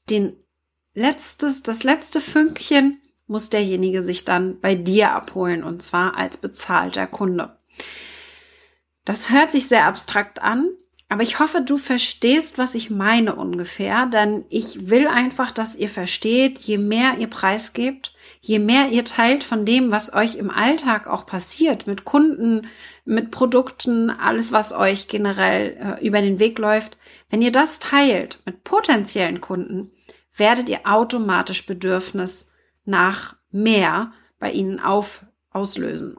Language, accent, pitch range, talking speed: German, German, 200-265 Hz, 140 wpm